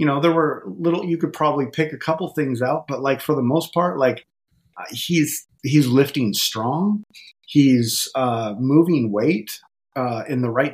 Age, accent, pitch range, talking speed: 30-49, American, 115-155 Hz, 180 wpm